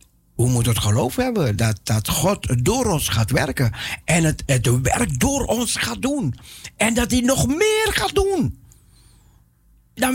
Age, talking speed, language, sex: 60-79, 165 wpm, Dutch, male